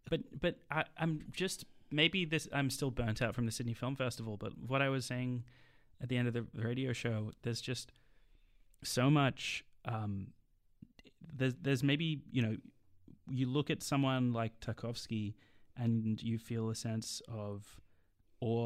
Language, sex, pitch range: English, male, 105-125 Hz